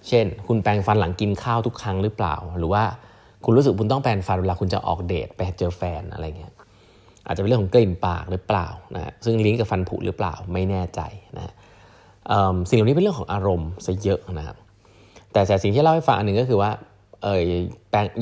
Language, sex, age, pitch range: Thai, male, 20-39, 90-115 Hz